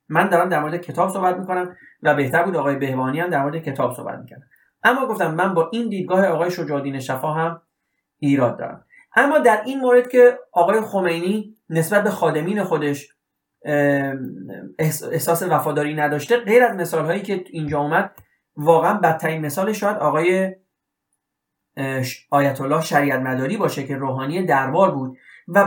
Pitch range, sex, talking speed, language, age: 145-185 Hz, male, 150 wpm, Persian, 30-49